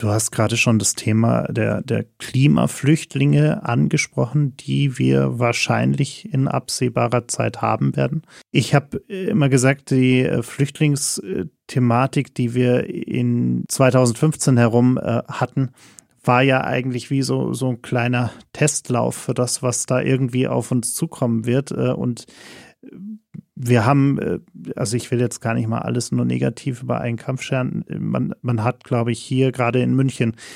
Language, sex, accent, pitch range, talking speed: German, male, German, 120-140 Hz, 145 wpm